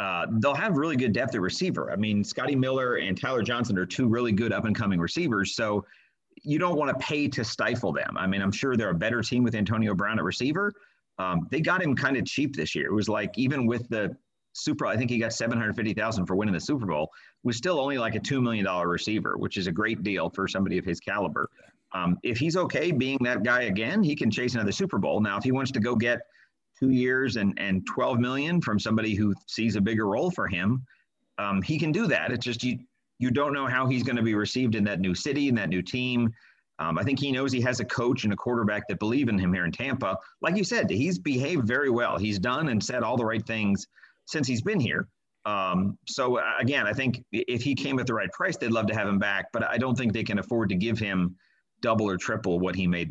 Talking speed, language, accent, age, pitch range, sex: 250 wpm, English, American, 40-59, 100-125 Hz, male